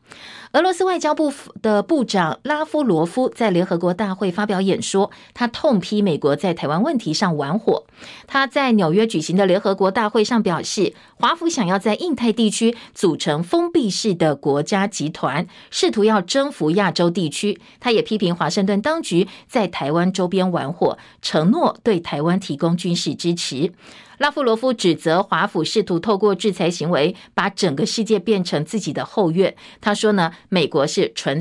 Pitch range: 180-235 Hz